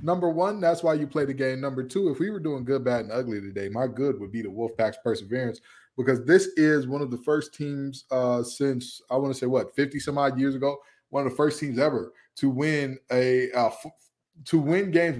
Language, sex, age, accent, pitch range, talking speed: English, male, 20-39, American, 120-150 Hz, 215 wpm